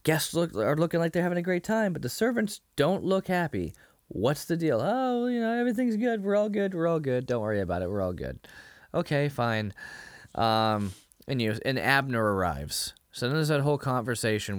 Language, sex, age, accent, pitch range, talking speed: English, male, 20-39, American, 110-165 Hz, 210 wpm